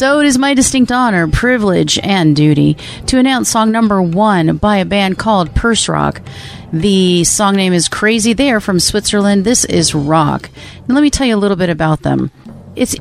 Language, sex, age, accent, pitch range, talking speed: English, female, 40-59, American, 170-225 Hz, 200 wpm